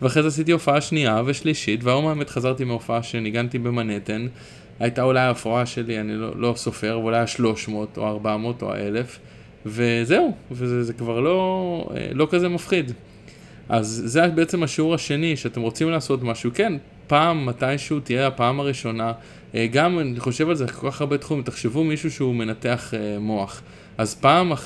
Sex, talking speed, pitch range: male, 155 wpm, 110-145 Hz